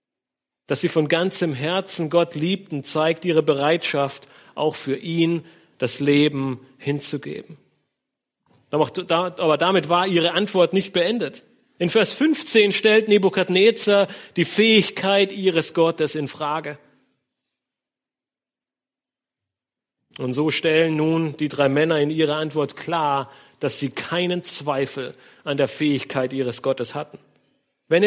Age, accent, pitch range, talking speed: 40-59, German, 145-200 Hz, 120 wpm